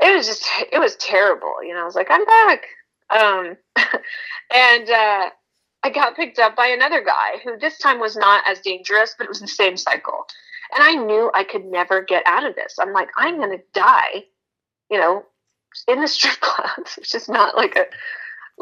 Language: English